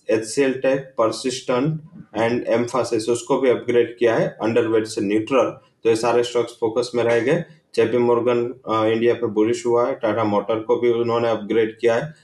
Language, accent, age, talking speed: English, Indian, 20-39, 155 wpm